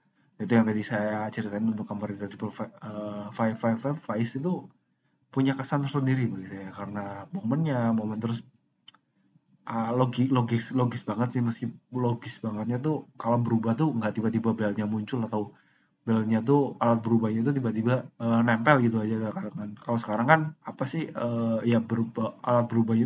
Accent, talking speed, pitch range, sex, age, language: native, 150 wpm, 115-135 Hz, male, 20-39, Indonesian